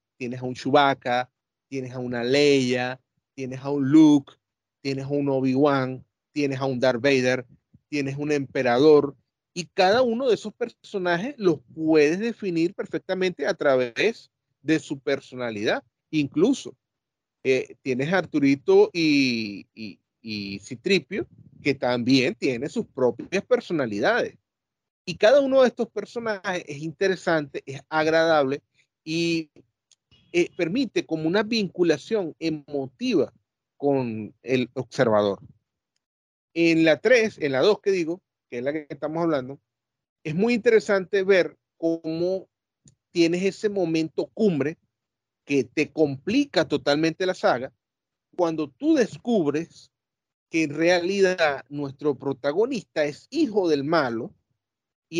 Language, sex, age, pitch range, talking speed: Spanish, male, 30-49, 135-190 Hz, 125 wpm